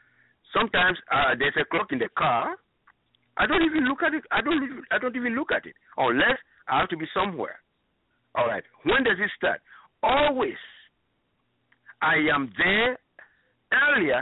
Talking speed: 170 wpm